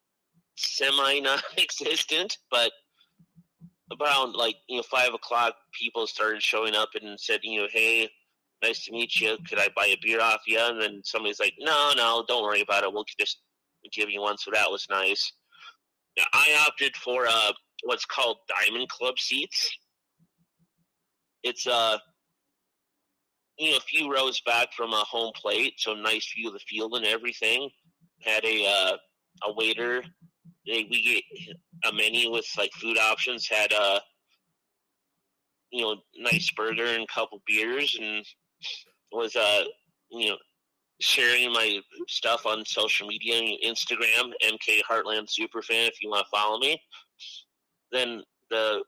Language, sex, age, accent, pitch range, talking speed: English, male, 30-49, American, 110-145 Hz, 150 wpm